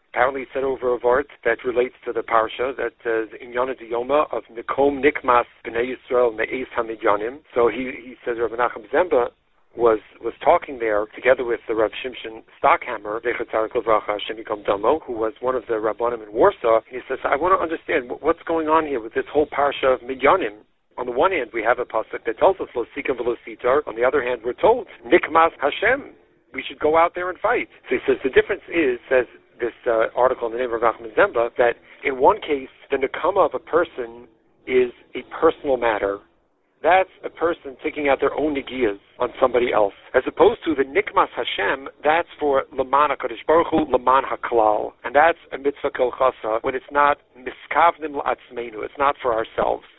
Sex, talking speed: male, 180 wpm